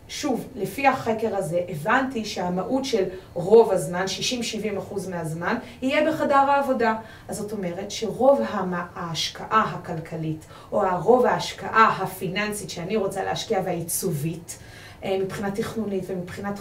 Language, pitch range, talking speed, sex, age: Hebrew, 195-235 Hz, 120 wpm, female, 30-49